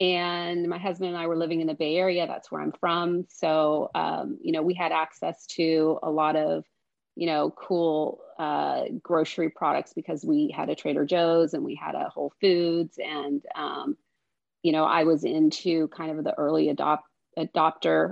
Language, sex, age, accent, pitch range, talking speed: English, female, 30-49, American, 155-205 Hz, 190 wpm